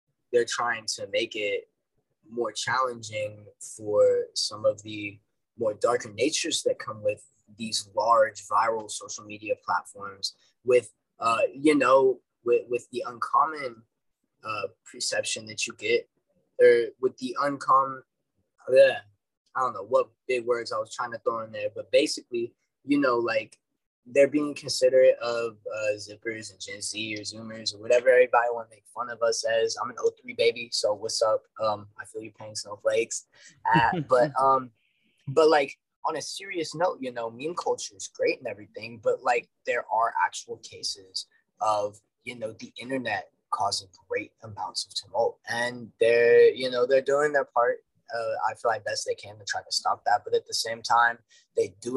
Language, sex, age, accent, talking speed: English, male, 20-39, American, 175 wpm